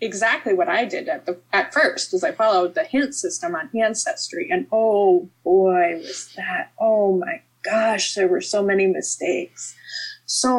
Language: English